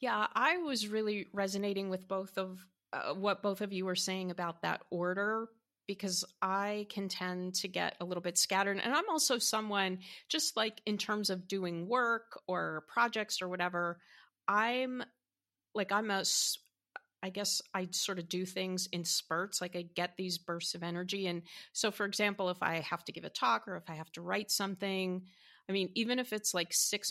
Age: 30-49